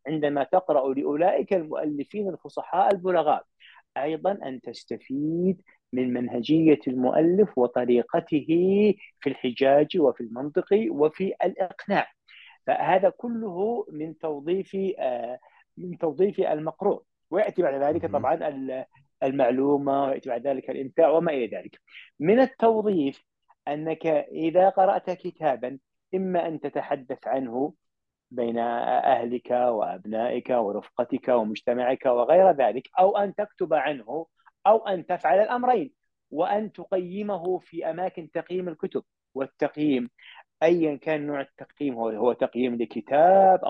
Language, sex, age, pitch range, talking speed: Arabic, male, 40-59, 130-185 Hz, 105 wpm